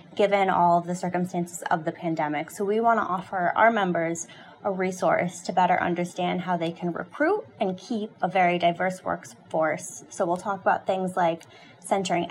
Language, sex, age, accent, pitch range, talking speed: English, female, 20-39, American, 180-220 Hz, 175 wpm